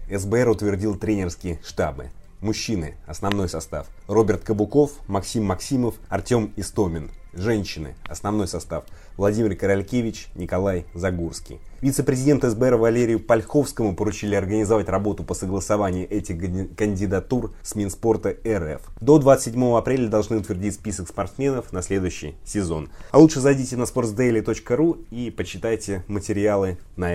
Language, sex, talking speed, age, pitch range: Russian, male, 115 wpm, 20-39, 90-120 Hz